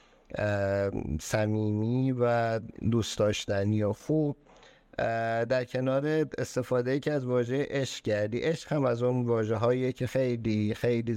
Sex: male